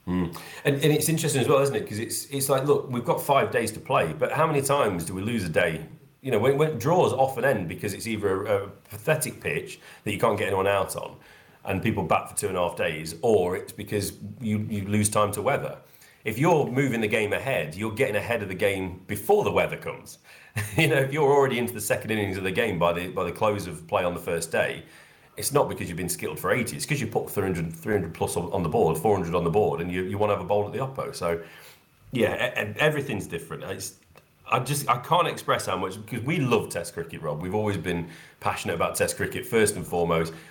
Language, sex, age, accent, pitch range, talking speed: English, male, 30-49, British, 95-135 Hz, 250 wpm